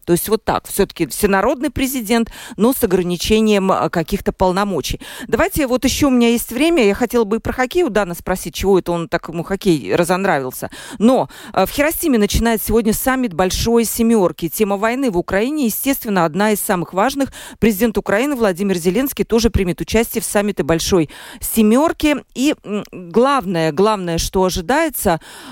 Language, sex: Russian, female